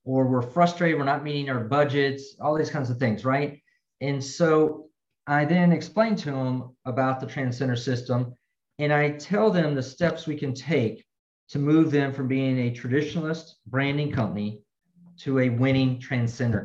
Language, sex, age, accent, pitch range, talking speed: English, male, 40-59, American, 125-155 Hz, 170 wpm